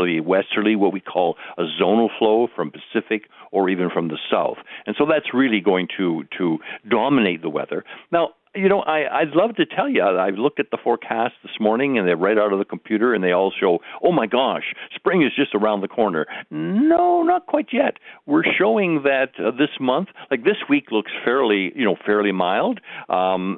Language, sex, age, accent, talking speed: English, male, 60-79, American, 205 wpm